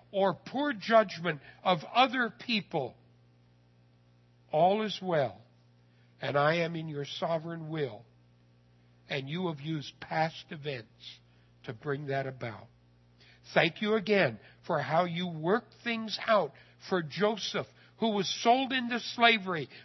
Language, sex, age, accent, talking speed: English, male, 60-79, American, 125 wpm